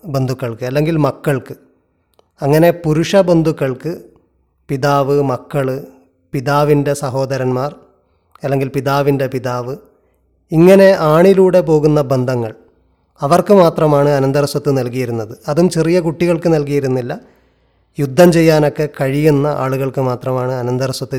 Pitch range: 130-165 Hz